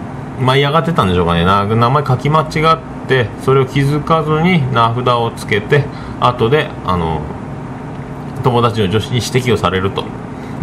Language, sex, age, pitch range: Japanese, male, 40-59, 105-140 Hz